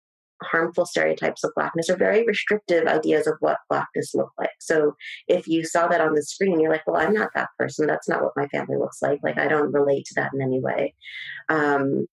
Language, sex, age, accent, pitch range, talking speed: English, female, 30-49, American, 140-170 Hz, 225 wpm